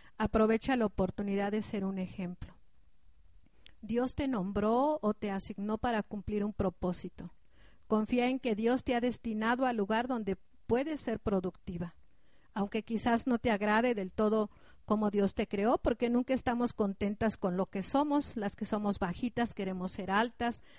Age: 50-69